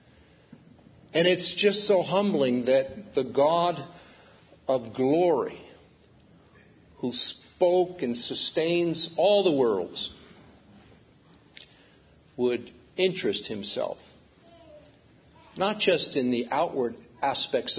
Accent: American